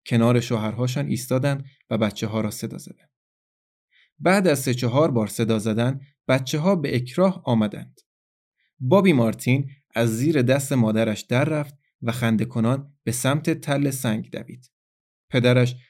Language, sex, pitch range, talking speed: Persian, male, 115-140 Hz, 140 wpm